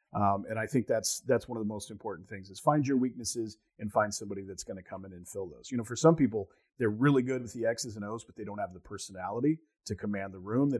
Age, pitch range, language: 40-59, 100-120 Hz, English